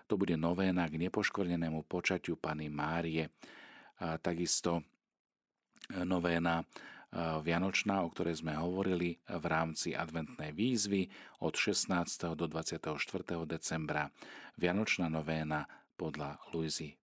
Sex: male